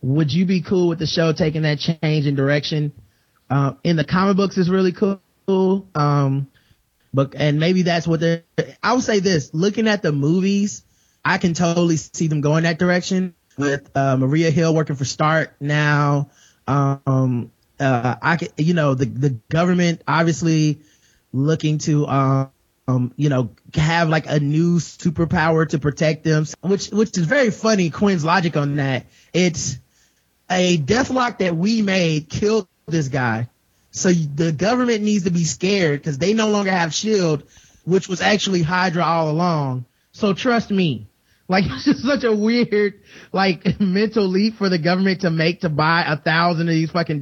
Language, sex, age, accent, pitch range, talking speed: English, male, 20-39, American, 140-185 Hz, 175 wpm